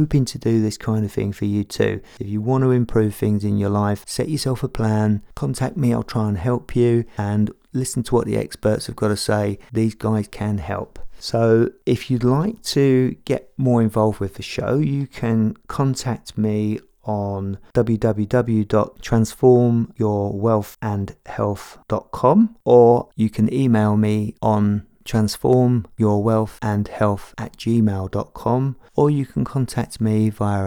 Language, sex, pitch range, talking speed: English, male, 105-125 Hz, 155 wpm